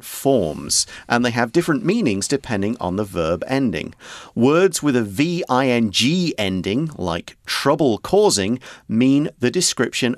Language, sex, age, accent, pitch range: Chinese, male, 40-59, British, 105-140 Hz